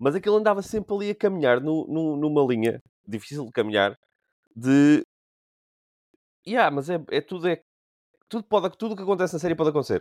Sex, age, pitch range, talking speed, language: male, 20-39, 110-155 Hz, 185 wpm, Portuguese